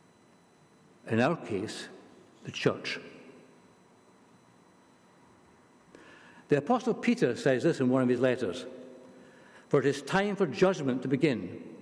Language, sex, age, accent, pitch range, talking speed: English, male, 60-79, British, 130-180 Hz, 115 wpm